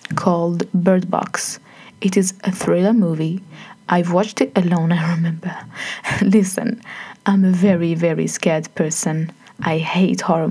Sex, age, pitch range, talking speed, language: female, 20-39, 175-210 Hz, 135 wpm, English